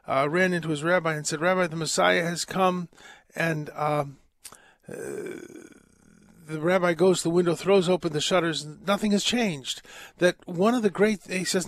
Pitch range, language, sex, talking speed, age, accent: 170-215 Hz, English, male, 185 wpm, 50-69, American